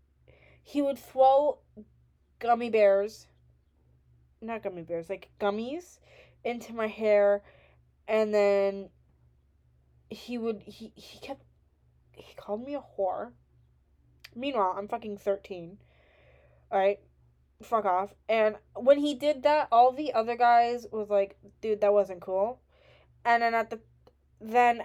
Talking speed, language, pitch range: 125 wpm, English, 160-220 Hz